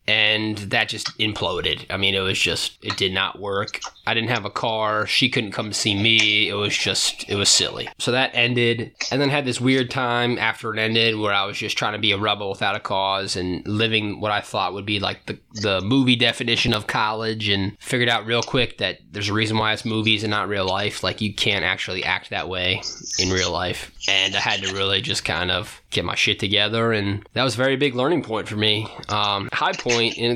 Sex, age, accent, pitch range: male, 20-39, American, 100-120 Hz